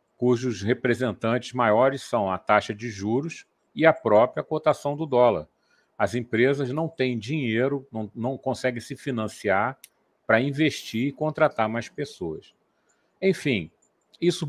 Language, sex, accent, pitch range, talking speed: Portuguese, male, Brazilian, 110-140 Hz, 135 wpm